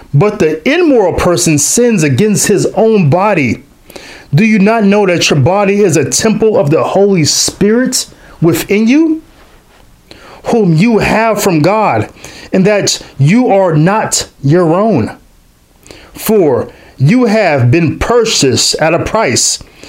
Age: 40-59